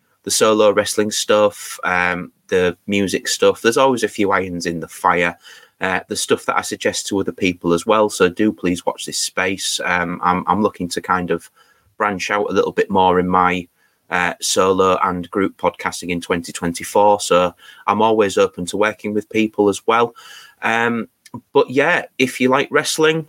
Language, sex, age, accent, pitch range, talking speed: English, male, 30-49, British, 95-125 Hz, 185 wpm